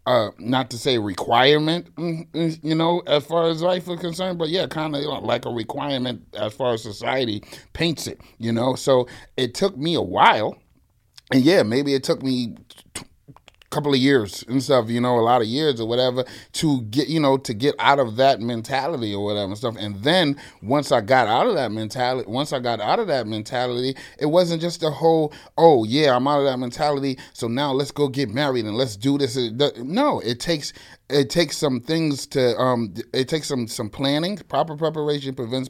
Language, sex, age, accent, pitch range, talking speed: English, male, 30-49, American, 115-145 Hz, 205 wpm